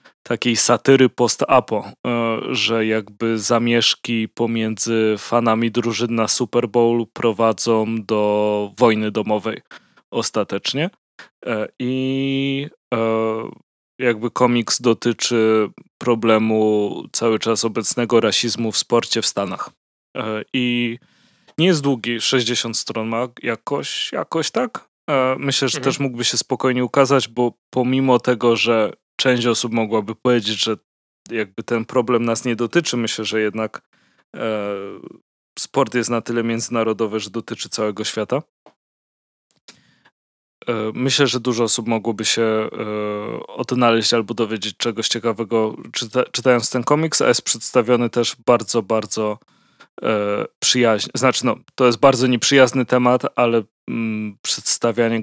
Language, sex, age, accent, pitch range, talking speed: Polish, male, 20-39, native, 110-125 Hz, 115 wpm